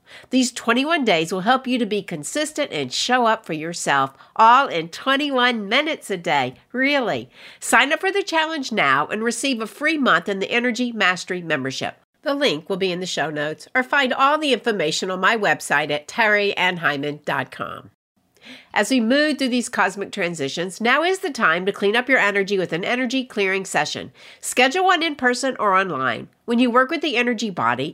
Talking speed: 190 wpm